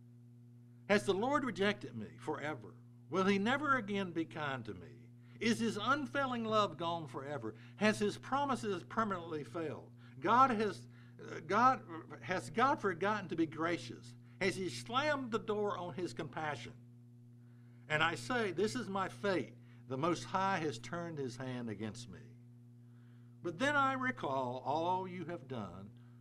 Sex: male